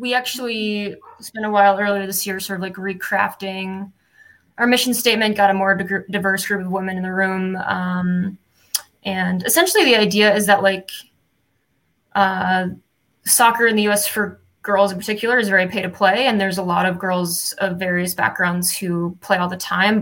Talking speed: 185 wpm